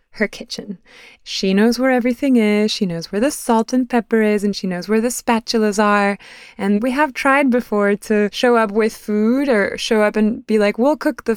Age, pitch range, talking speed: 20-39, 195-245 Hz, 215 wpm